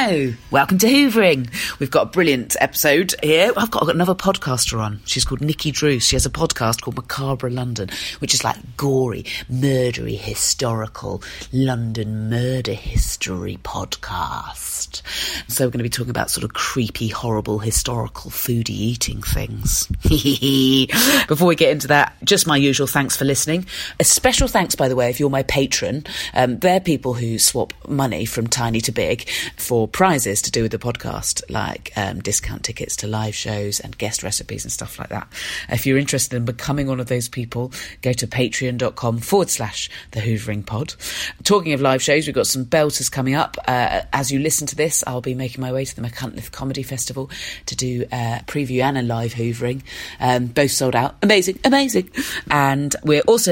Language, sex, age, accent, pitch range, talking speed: English, female, 30-49, British, 120-150 Hz, 185 wpm